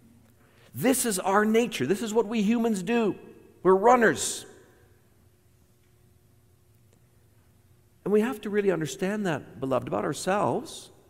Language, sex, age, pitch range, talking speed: English, male, 50-69, 115-175 Hz, 120 wpm